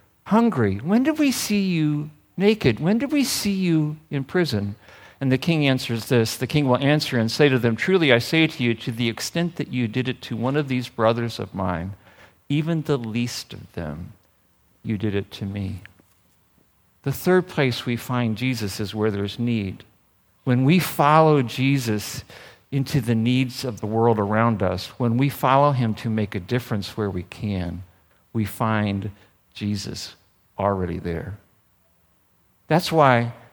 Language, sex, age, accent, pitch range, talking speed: English, male, 50-69, American, 110-145 Hz, 170 wpm